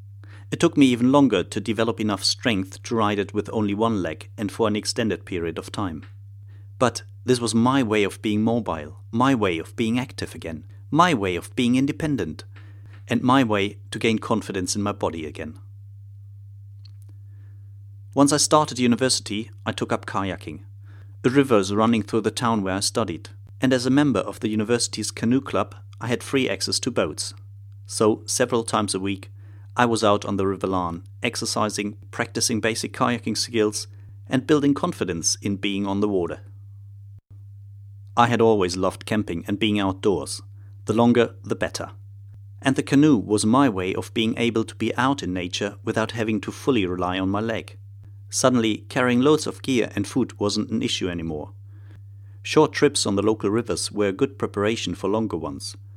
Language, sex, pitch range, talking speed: English, male, 100-115 Hz, 180 wpm